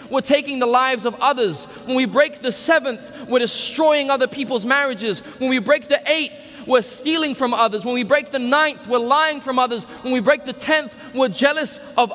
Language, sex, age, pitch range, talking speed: English, male, 20-39, 195-285 Hz, 205 wpm